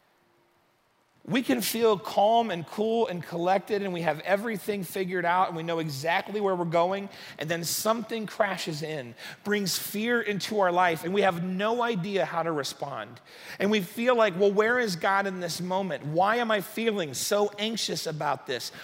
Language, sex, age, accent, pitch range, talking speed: English, male, 40-59, American, 170-215 Hz, 185 wpm